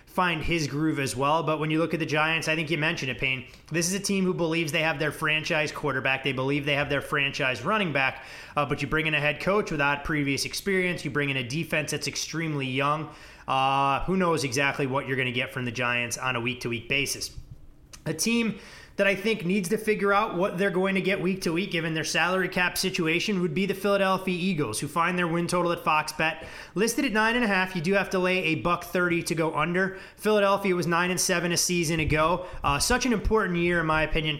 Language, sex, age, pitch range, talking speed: English, male, 30-49, 150-185 Hz, 245 wpm